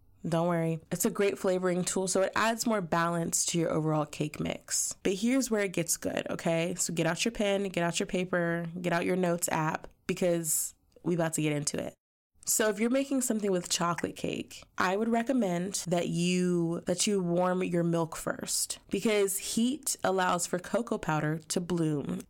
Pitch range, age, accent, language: 165-200 Hz, 20-39, American, English